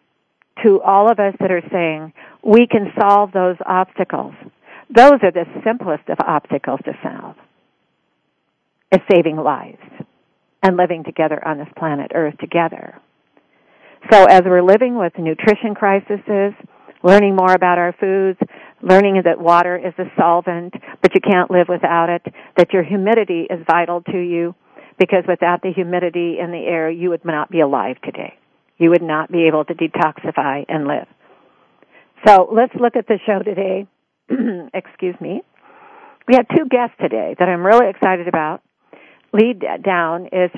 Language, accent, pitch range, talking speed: English, American, 175-205 Hz, 155 wpm